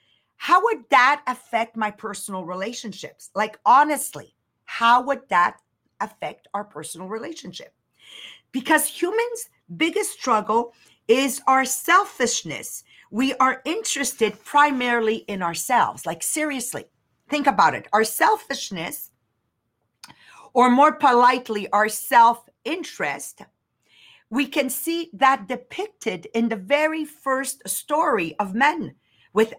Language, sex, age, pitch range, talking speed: English, female, 50-69, 210-280 Hz, 110 wpm